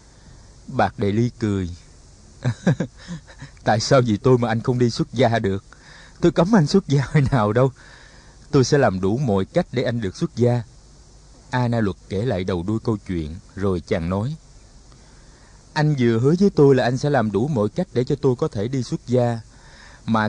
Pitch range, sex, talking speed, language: 105-145 Hz, male, 200 wpm, Vietnamese